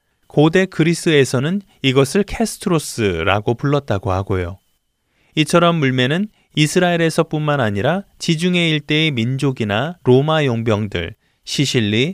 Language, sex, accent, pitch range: Korean, male, native, 115-165 Hz